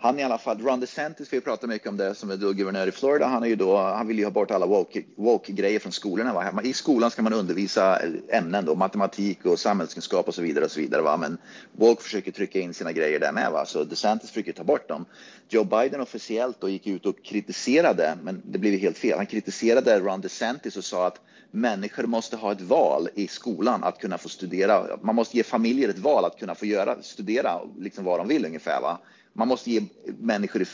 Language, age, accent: Swedish, 30-49, native